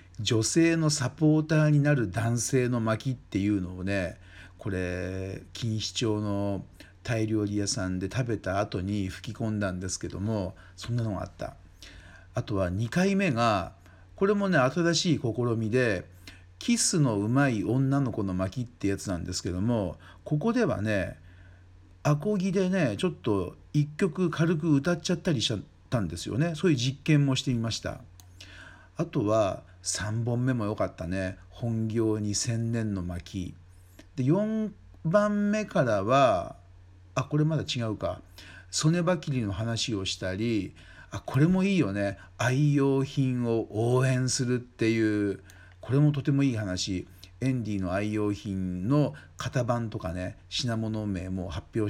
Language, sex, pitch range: Japanese, male, 95-135 Hz